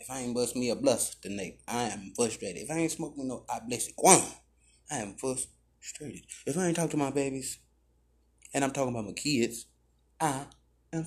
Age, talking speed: 20-39, 210 wpm